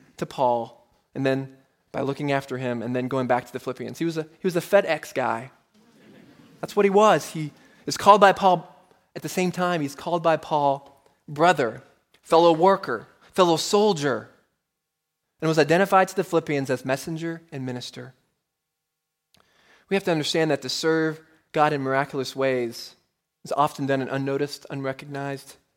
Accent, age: American, 20-39